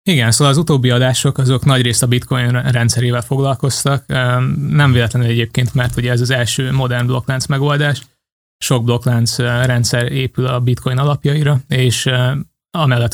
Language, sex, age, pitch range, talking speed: Hungarian, male, 20-39, 125-140 Hz, 145 wpm